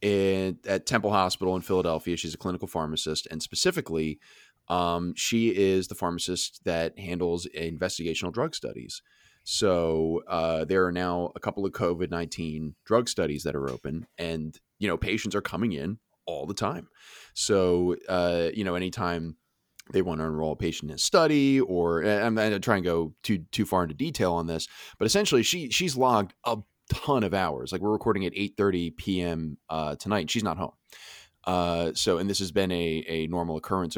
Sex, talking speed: male, 185 wpm